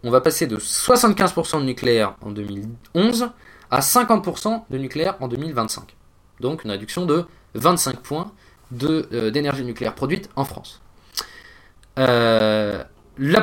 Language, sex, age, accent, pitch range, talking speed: French, male, 20-39, French, 115-175 Hz, 130 wpm